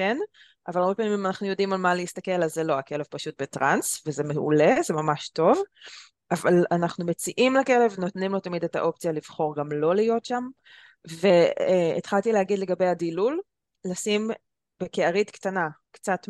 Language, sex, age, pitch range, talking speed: Hebrew, female, 20-39, 160-195 Hz, 160 wpm